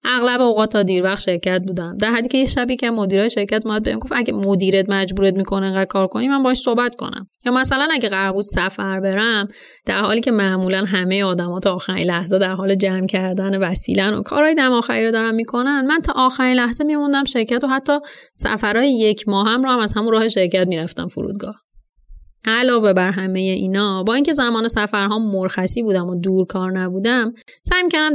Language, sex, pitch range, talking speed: Persian, female, 185-245 Hz, 190 wpm